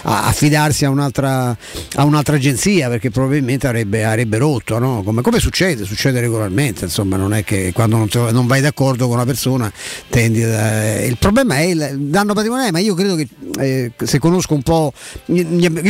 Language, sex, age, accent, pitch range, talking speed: Italian, male, 50-69, native, 125-155 Hz, 175 wpm